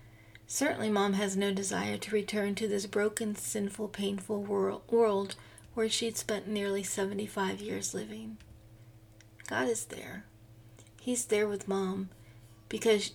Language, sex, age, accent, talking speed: English, female, 40-59, American, 130 wpm